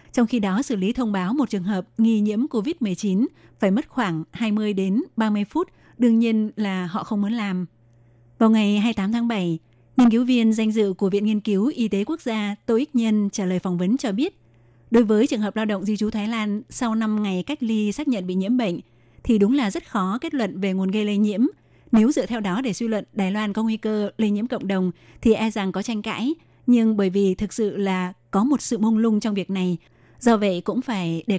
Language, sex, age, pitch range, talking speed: Vietnamese, female, 20-39, 190-230 Hz, 245 wpm